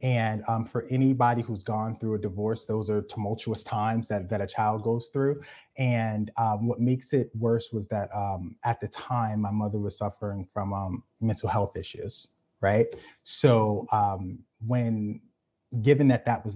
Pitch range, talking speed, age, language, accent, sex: 100-115 Hz, 175 wpm, 30-49, English, American, male